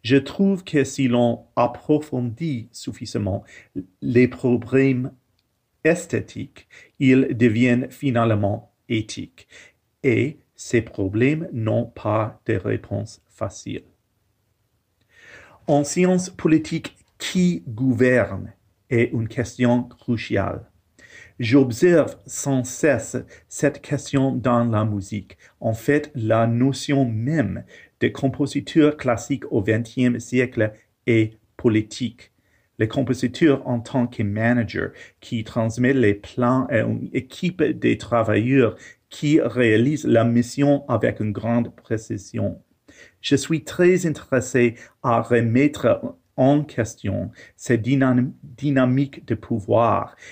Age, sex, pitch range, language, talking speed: 40-59, male, 115-135 Hz, English, 105 wpm